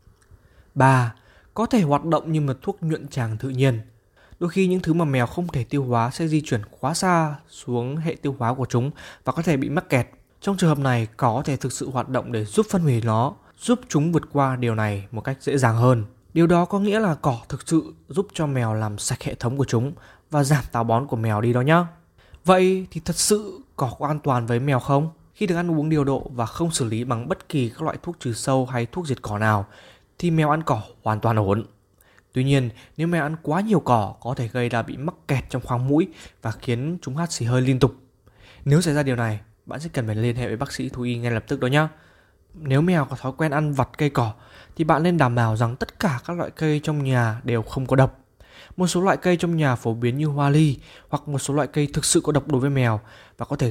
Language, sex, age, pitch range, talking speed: Vietnamese, male, 20-39, 120-155 Hz, 260 wpm